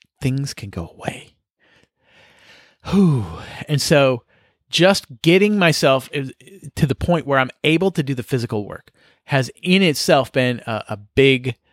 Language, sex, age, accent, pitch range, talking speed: English, male, 30-49, American, 115-155 Hz, 145 wpm